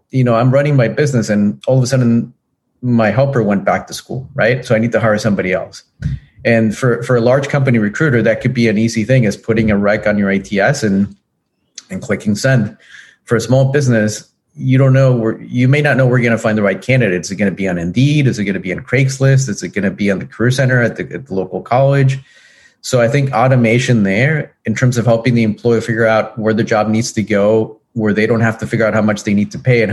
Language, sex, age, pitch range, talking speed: English, male, 40-59, 105-130 Hz, 265 wpm